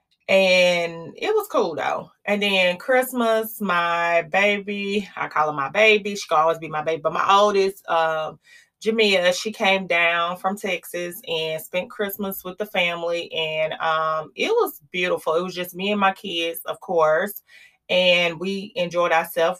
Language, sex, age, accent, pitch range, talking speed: English, female, 30-49, American, 165-200 Hz, 170 wpm